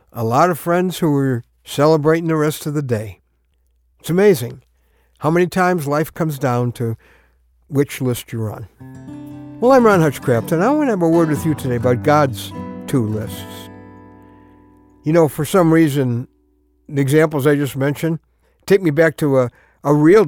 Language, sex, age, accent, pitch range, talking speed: English, male, 60-79, American, 115-175 Hz, 180 wpm